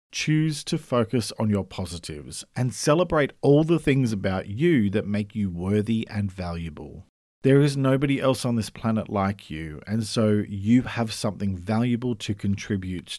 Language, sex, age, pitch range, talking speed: English, male, 40-59, 90-125 Hz, 165 wpm